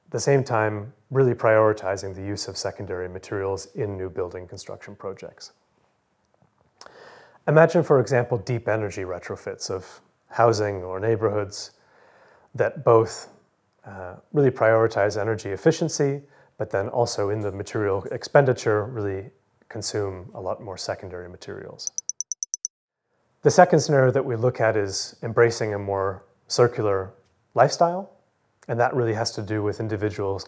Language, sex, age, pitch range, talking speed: Danish, male, 30-49, 100-125 Hz, 135 wpm